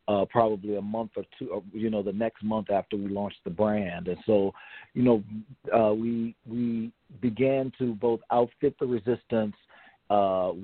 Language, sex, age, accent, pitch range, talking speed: English, male, 40-59, American, 100-115 Hz, 175 wpm